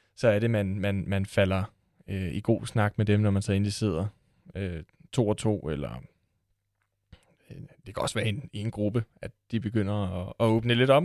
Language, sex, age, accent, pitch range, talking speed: Danish, male, 20-39, native, 100-125 Hz, 215 wpm